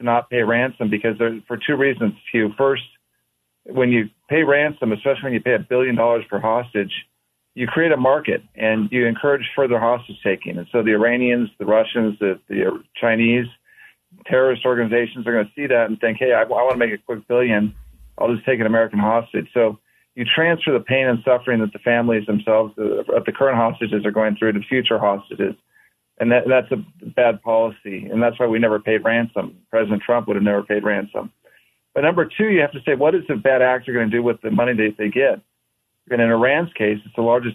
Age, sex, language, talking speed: 40-59, male, English, 215 wpm